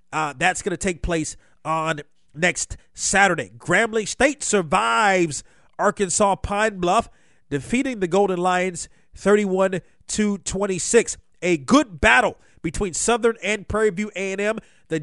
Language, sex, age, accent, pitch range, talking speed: English, male, 40-59, American, 165-205 Hz, 120 wpm